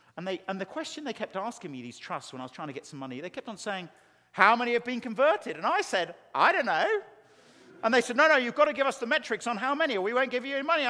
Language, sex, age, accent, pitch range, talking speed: English, male, 50-69, British, 215-300 Hz, 305 wpm